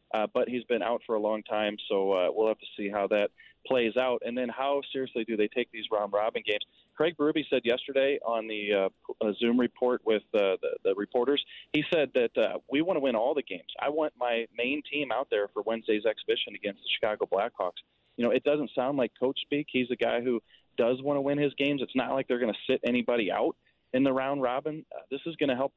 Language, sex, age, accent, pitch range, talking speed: English, male, 30-49, American, 115-145 Hz, 245 wpm